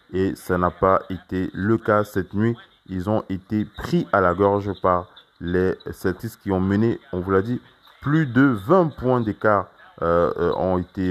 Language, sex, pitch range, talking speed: French, male, 90-110 Hz, 185 wpm